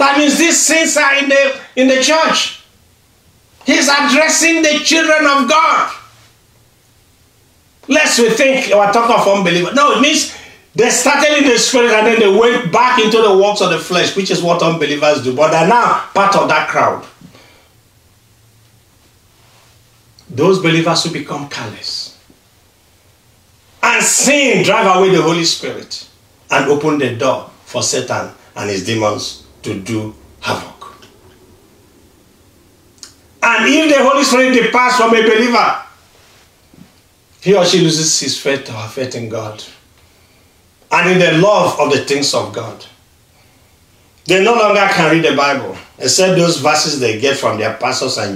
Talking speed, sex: 150 wpm, male